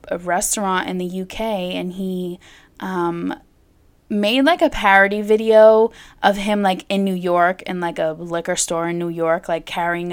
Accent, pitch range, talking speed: American, 180-235 Hz, 165 wpm